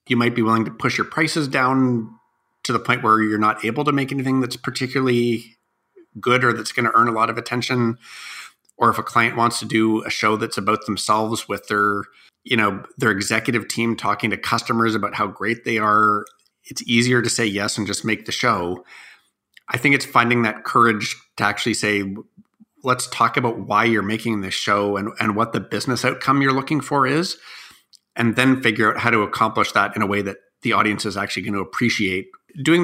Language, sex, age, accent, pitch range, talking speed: Italian, male, 30-49, American, 105-135 Hz, 205 wpm